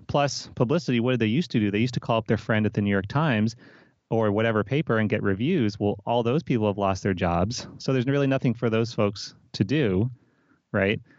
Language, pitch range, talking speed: English, 105-130 Hz, 235 wpm